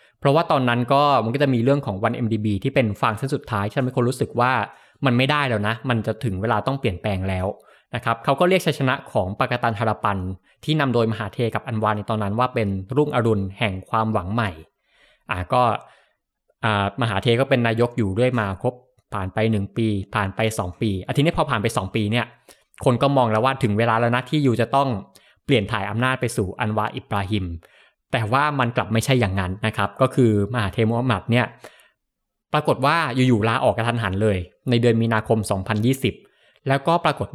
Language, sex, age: Thai, male, 20-39